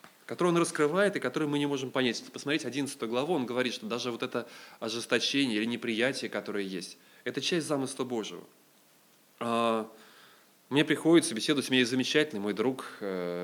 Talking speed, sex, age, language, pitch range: 150 wpm, male, 20-39, Russian, 110-140 Hz